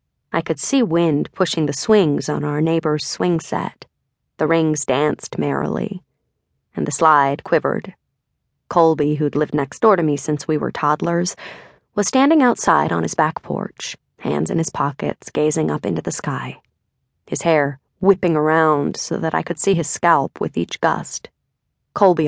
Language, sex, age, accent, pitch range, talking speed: English, female, 30-49, American, 150-190 Hz, 165 wpm